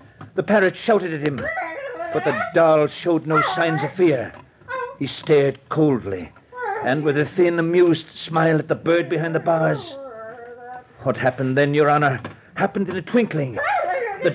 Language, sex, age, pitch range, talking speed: English, male, 60-79, 160-220 Hz, 160 wpm